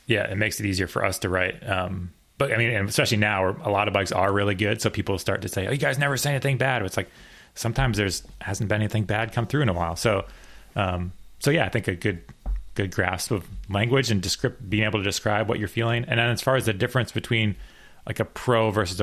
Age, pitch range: 30-49, 90-110 Hz